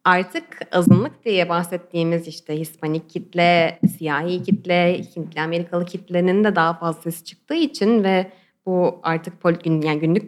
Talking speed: 125 wpm